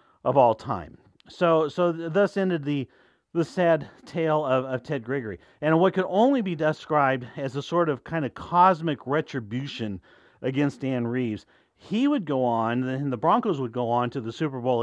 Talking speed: 190 wpm